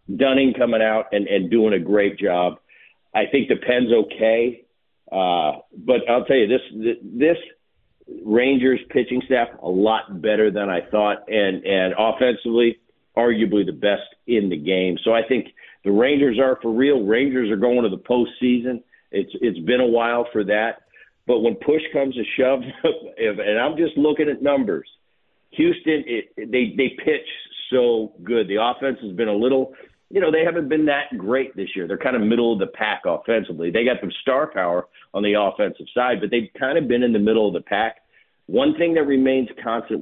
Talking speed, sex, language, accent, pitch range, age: 190 wpm, male, English, American, 110-135 Hz, 50-69